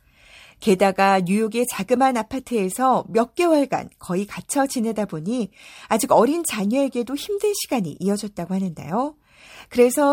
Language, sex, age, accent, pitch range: Korean, female, 40-59, native, 190-280 Hz